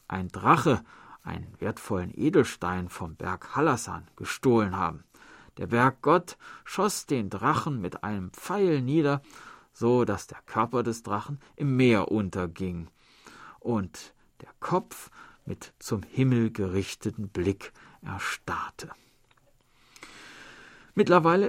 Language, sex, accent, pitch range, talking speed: German, male, German, 95-130 Hz, 105 wpm